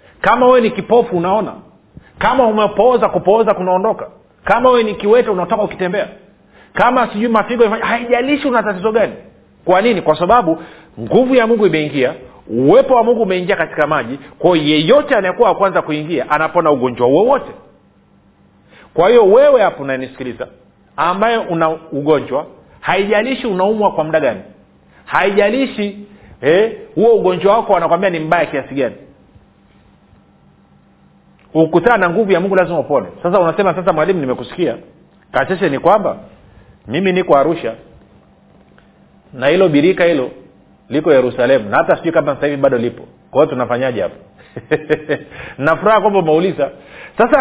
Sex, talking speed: male, 140 wpm